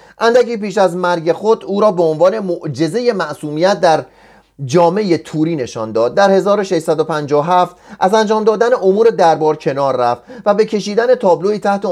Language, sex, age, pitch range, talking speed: Persian, male, 30-49, 160-215 Hz, 150 wpm